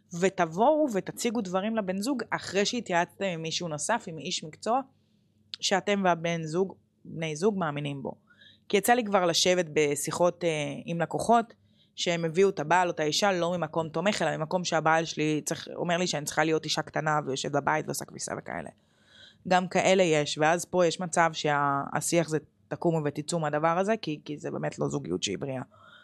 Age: 20-39